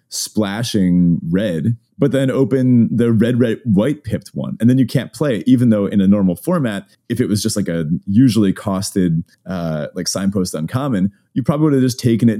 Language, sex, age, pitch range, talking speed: English, male, 30-49, 90-120 Hz, 205 wpm